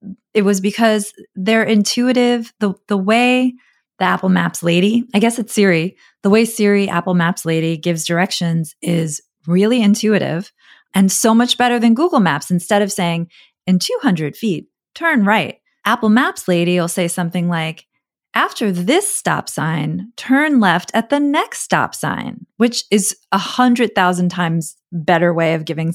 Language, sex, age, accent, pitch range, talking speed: English, female, 30-49, American, 165-220 Hz, 165 wpm